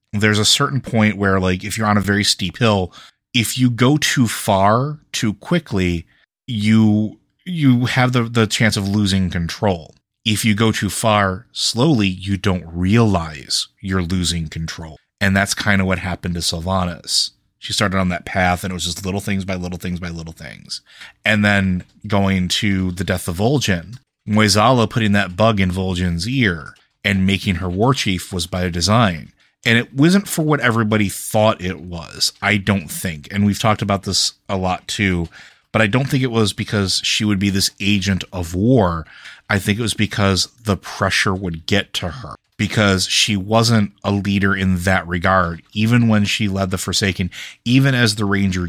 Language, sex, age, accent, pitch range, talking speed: English, male, 30-49, American, 95-110 Hz, 185 wpm